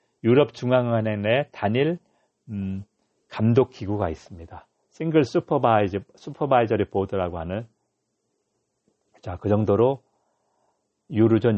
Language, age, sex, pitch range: Korean, 40-59, male, 100-140 Hz